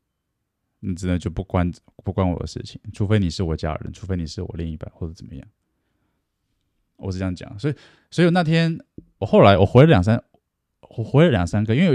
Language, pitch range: Chinese, 90-125 Hz